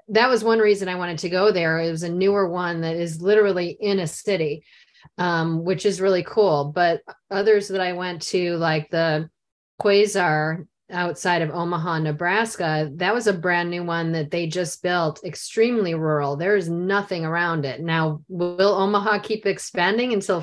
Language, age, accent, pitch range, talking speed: English, 30-49, American, 160-195 Hz, 180 wpm